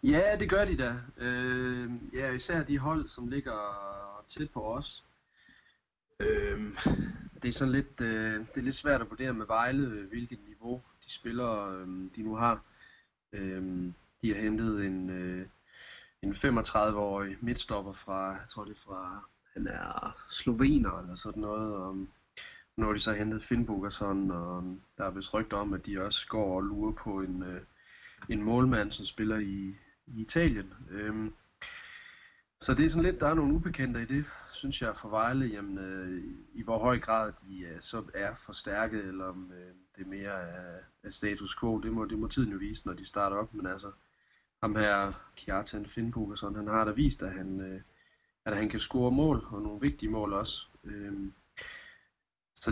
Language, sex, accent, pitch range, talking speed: Danish, male, native, 100-125 Hz, 175 wpm